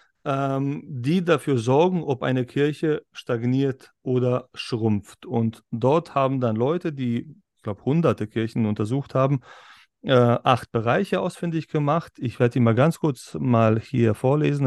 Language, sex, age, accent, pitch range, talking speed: German, male, 30-49, German, 115-145 Hz, 140 wpm